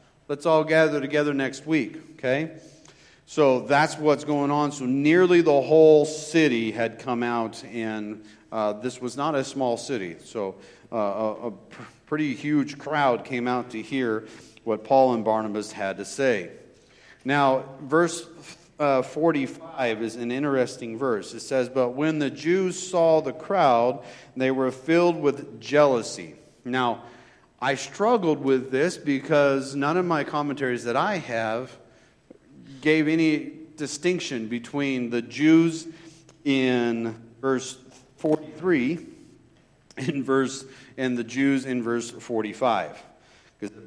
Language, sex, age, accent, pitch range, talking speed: English, male, 40-59, American, 115-150 Hz, 135 wpm